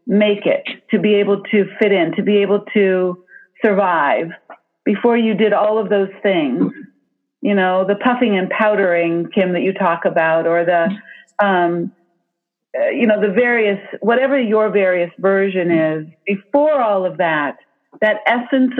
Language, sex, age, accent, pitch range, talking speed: English, female, 50-69, American, 180-225 Hz, 155 wpm